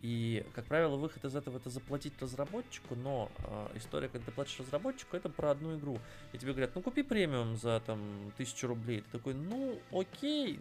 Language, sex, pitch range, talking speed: Russian, male, 105-135 Hz, 200 wpm